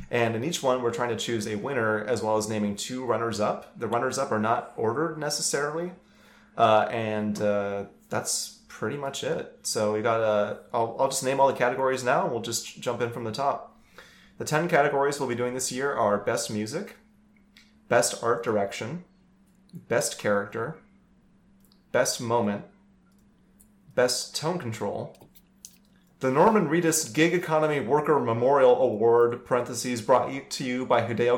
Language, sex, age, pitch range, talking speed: English, male, 30-49, 115-190 Hz, 160 wpm